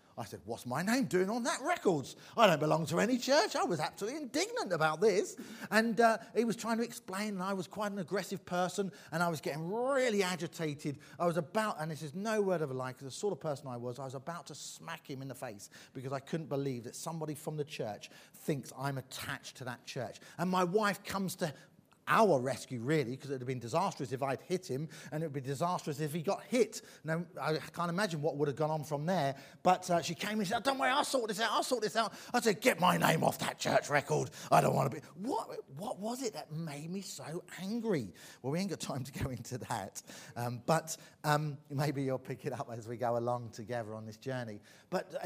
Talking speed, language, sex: 245 wpm, English, male